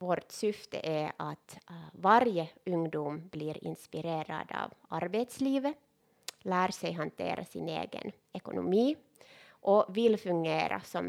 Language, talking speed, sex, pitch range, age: Swedish, 115 wpm, female, 170-210 Hz, 20-39